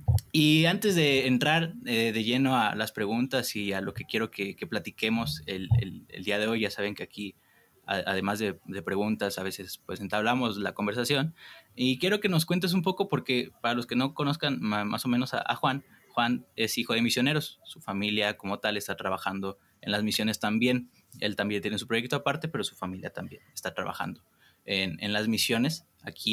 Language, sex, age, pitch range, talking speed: Spanish, male, 20-39, 100-130 Hz, 205 wpm